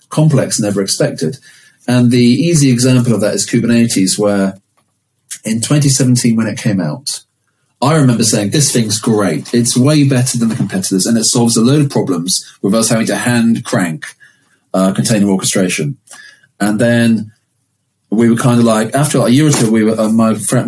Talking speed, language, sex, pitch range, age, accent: 185 wpm, English, male, 110-140 Hz, 30-49, British